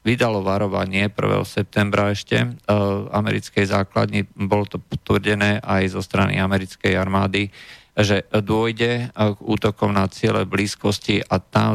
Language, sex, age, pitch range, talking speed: Slovak, male, 50-69, 95-105 Hz, 140 wpm